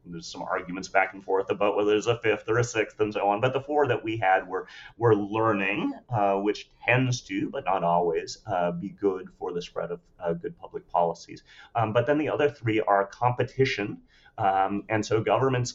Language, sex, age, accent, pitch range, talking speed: English, male, 30-49, American, 90-110 Hz, 215 wpm